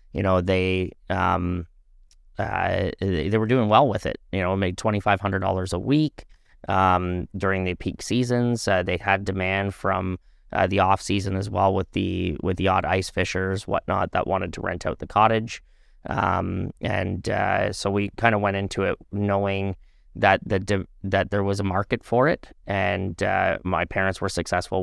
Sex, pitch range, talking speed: male, 90-100 Hz, 185 wpm